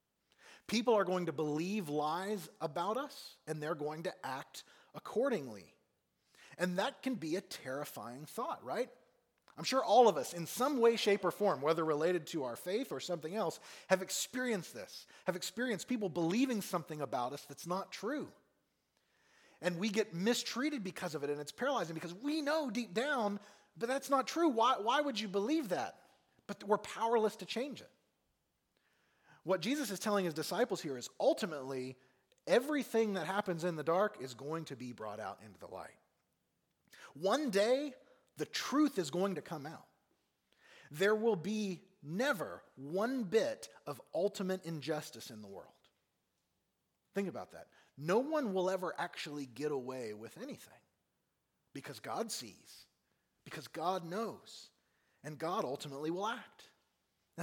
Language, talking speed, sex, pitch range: English, 160 wpm, male, 160-230 Hz